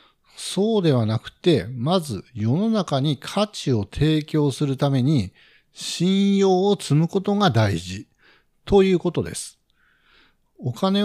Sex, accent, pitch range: male, native, 120-180 Hz